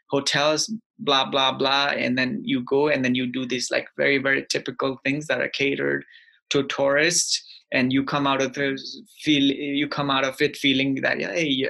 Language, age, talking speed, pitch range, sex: English, 20-39, 200 wpm, 130-160 Hz, male